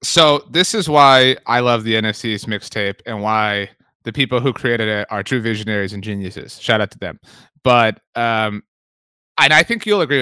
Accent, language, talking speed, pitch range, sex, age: American, English, 190 wpm, 120-165 Hz, male, 30-49